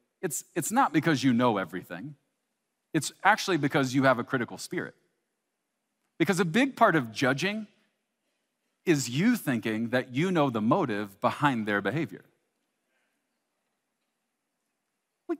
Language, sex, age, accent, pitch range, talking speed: English, male, 40-59, American, 115-195 Hz, 130 wpm